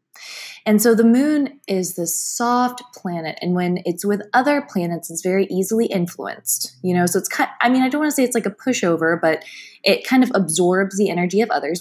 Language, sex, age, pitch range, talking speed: English, female, 20-39, 175-225 Hz, 225 wpm